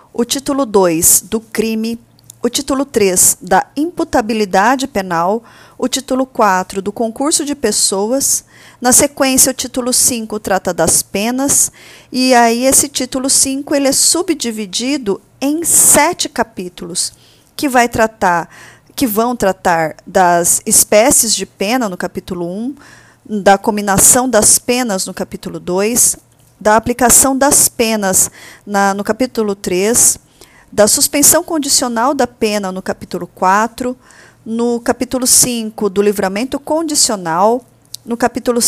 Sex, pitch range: female, 195-265 Hz